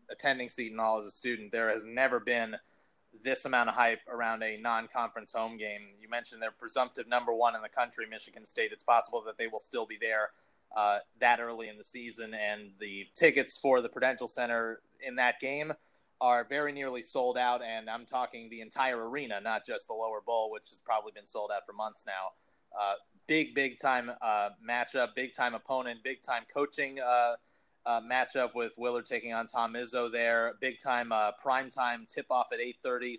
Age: 30-49